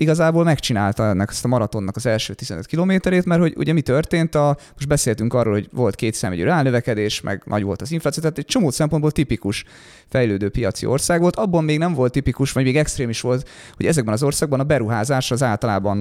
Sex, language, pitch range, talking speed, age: male, Hungarian, 110-150 Hz, 200 wpm, 30-49